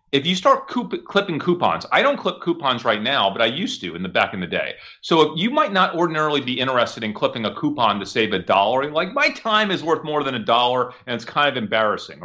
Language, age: English, 30-49